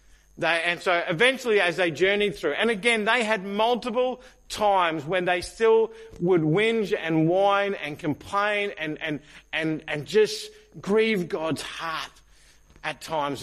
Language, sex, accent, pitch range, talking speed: English, male, Australian, 135-205 Hz, 145 wpm